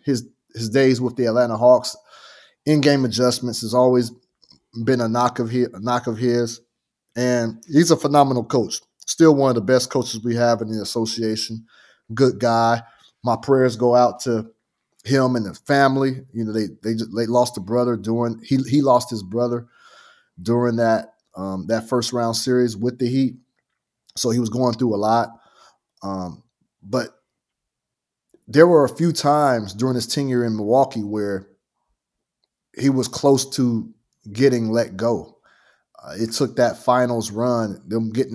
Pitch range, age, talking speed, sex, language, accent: 115-130 Hz, 30-49, 165 wpm, male, English, American